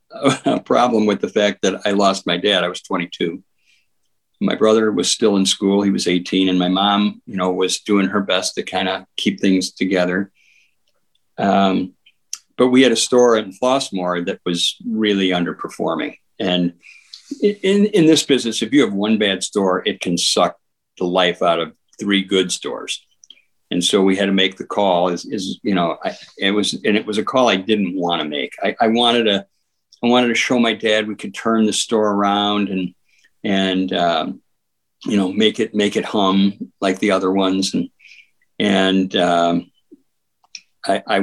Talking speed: 185 wpm